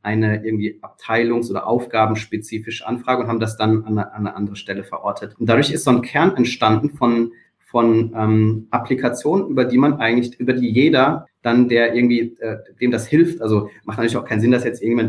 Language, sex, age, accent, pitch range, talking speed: German, male, 30-49, German, 110-130 Hz, 200 wpm